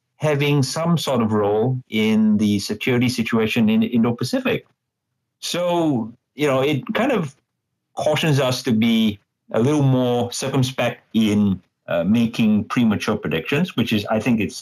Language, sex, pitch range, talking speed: English, male, 110-145 Hz, 150 wpm